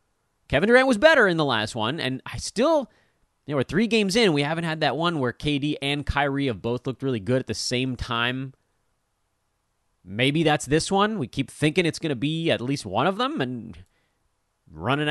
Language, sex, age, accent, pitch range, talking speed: English, male, 30-49, American, 105-160 Hz, 210 wpm